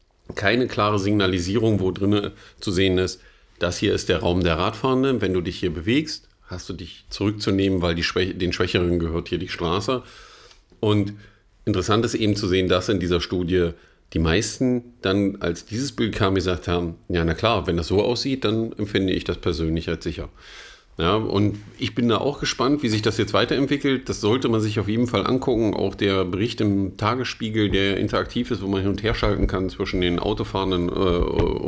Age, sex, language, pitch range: 50-69, male, German, 95-115 Hz